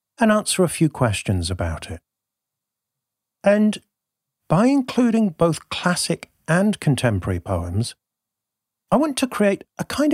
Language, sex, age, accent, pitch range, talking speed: English, male, 40-59, British, 110-180 Hz, 125 wpm